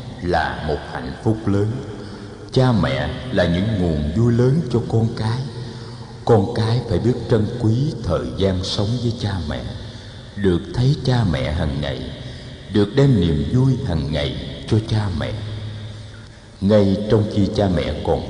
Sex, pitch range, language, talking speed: male, 90-120 Hz, Vietnamese, 155 wpm